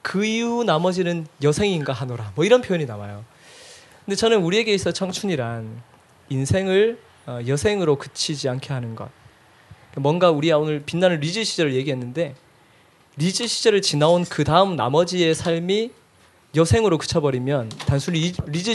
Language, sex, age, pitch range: Korean, male, 20-39, 135-185 Hz